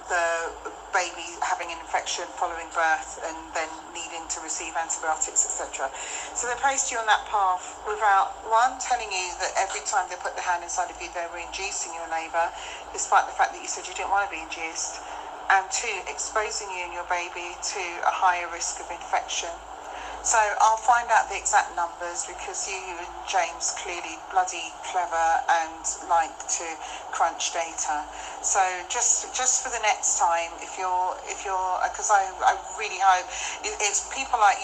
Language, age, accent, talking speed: English, 40-59, British, 180 wpm